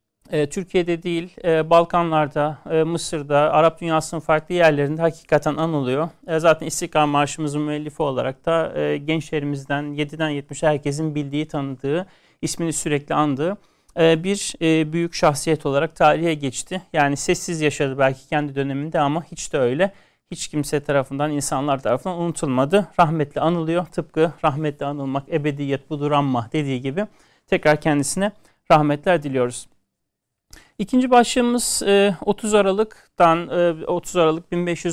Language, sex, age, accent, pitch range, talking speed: Turkish, male, 40-59, native, 145-175 Hz, 115 wpm